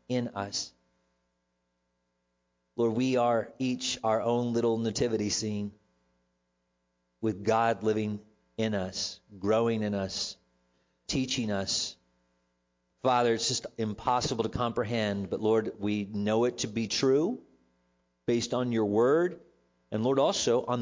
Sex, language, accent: male, English, American